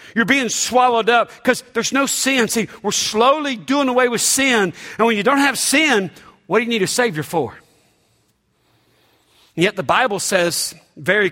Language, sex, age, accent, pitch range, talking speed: English, male, 50-69, American, 185-230 Hz, 180 wpm